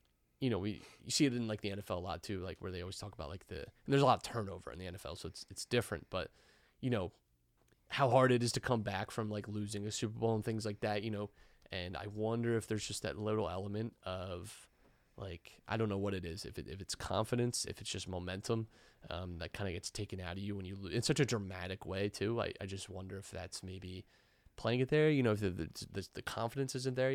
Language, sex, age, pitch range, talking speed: English, male, 20-39, 95-115 Hz, 260 wpm